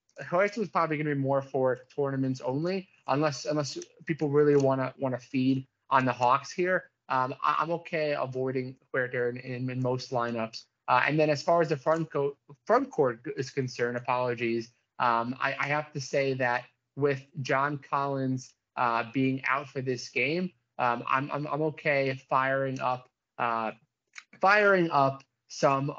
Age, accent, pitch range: 30-49, American, 130-150 Hz